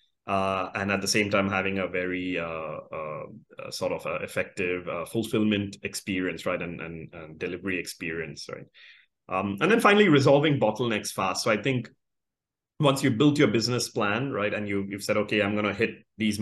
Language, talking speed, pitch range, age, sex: English, 190 wpm, 95-115 Hz, 30-49, male